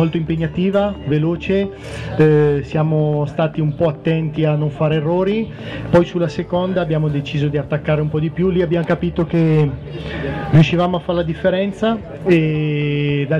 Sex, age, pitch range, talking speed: male, 30-49, 150-175 Hz, 150 wpm